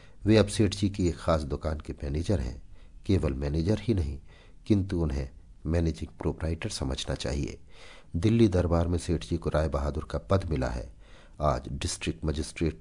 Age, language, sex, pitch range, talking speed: 50-69, Hindi, male, 75-95 Hz, 170 wpm